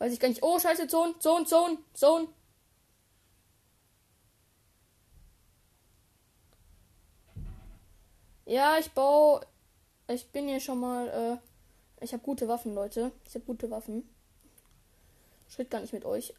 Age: 10-29